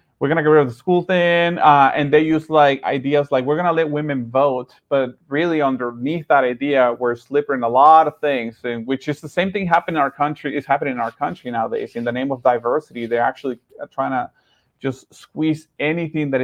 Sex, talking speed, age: male, 225 wpm, 30-49